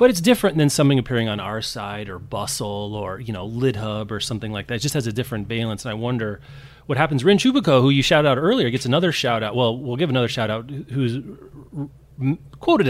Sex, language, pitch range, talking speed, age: male, English, 115-145 Hz, 220 wpm, 30-49